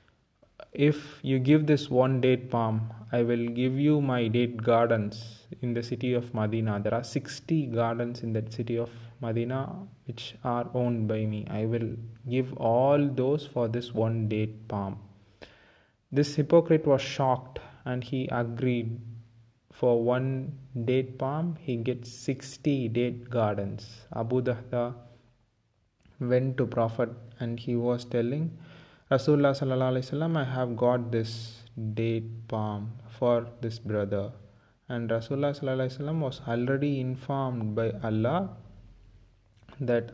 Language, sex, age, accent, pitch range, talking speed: English, male, 20-39, Indian, 115-130 Hz, 135 wpm